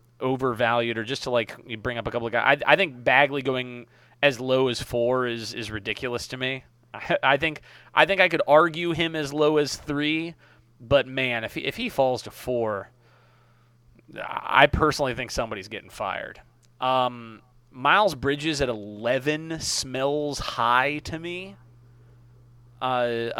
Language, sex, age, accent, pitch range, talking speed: English, male, 30-49, American, 120-140 Hz, 160 wpm